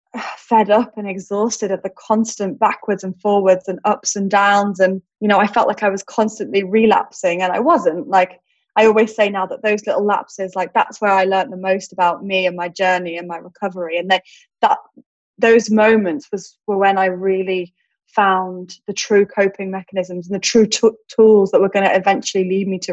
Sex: female